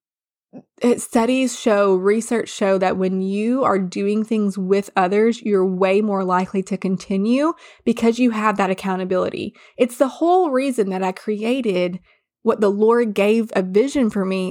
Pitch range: 195-245 Hz